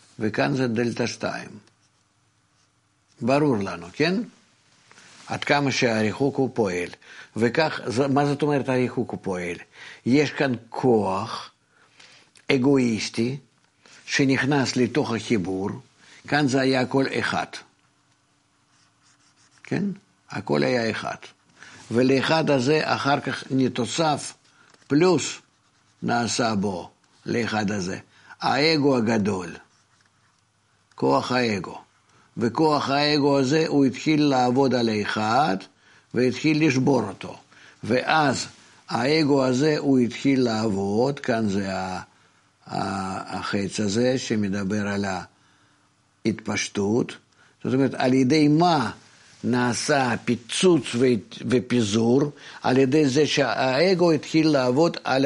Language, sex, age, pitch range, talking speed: Hebrew, male, 50-69, 115-140 Hz, 95 wpm